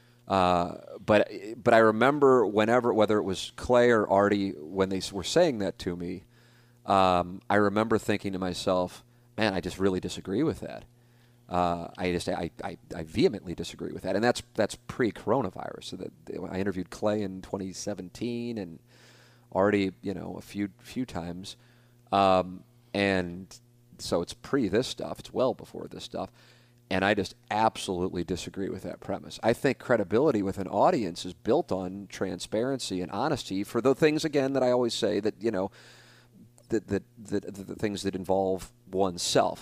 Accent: American